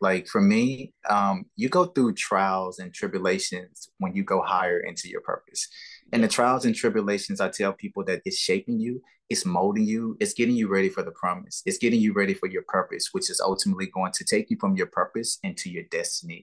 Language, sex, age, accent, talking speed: English, male, 20-39, American, 215 wpm